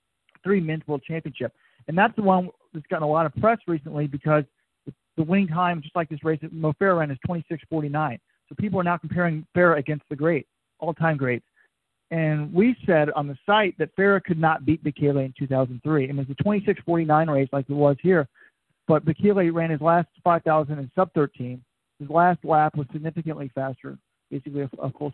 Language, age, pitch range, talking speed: English, 40-59, 150-190 Hz, 185 wpm